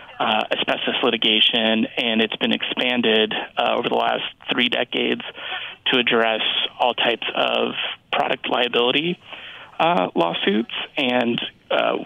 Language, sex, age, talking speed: English, male, 30-49, 120 wpm